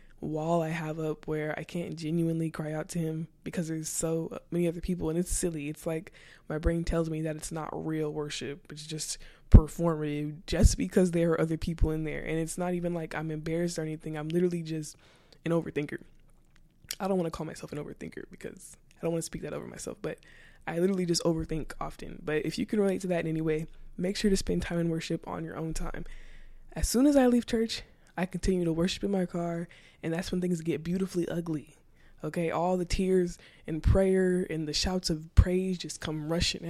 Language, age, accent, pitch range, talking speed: English, 20-39, American, 155-175 Hz, 220 wpm